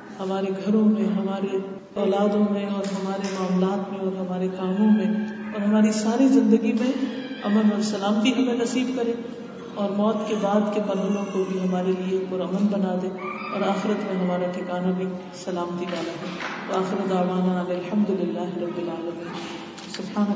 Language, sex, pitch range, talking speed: Urdu, female, 190-235 Hz, 155 wpm